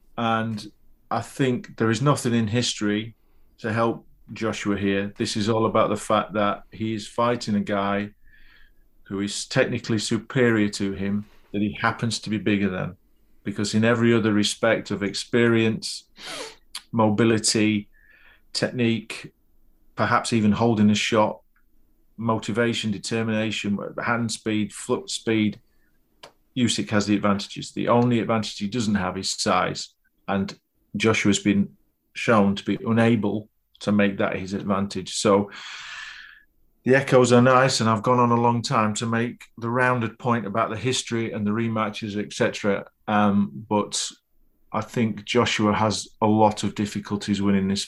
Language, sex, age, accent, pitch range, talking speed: English, male, 40-59, British, 100-115 Hz, 145 wpm